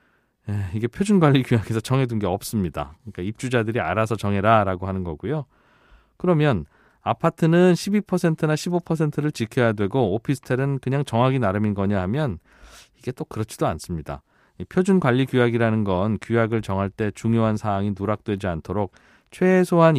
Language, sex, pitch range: Korean, male, 105-140 Hz